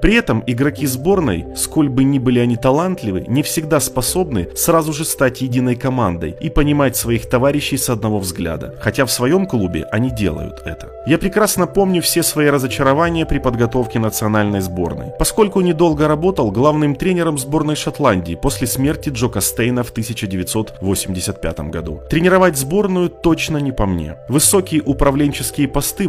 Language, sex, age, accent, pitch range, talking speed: Russian, male, 30-49, native, 110-150 Hz, 150 wpm